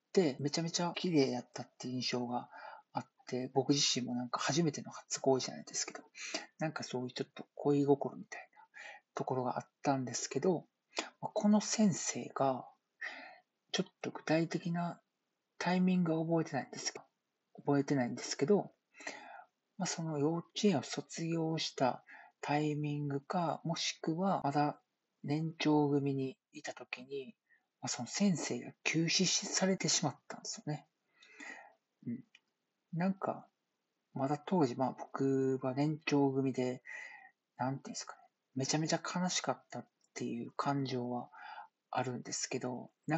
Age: 40-59